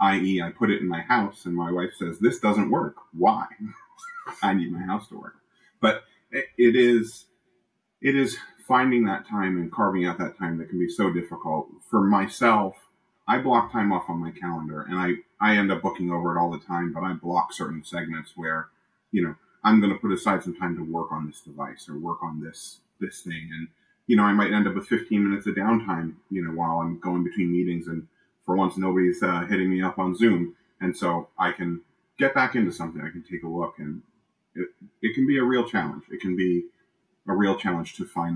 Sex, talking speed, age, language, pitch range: male, 225 wpm, 30-49, English, 85-105 Hz